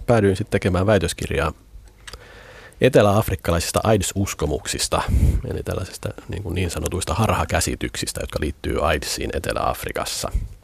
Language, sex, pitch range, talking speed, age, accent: Finnish, male, 85-105 Hz, 90 wpm, 30-49, native